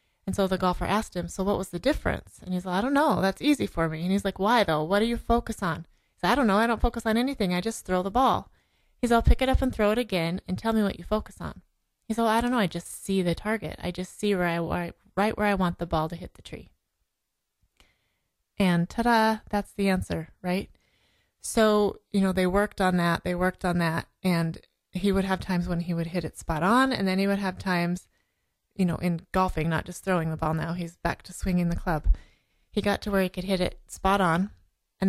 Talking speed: 260 wpm